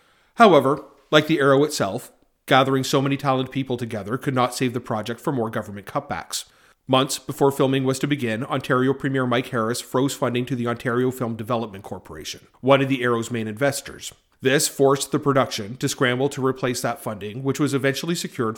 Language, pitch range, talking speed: English, 115-140 Hz, 185 wpm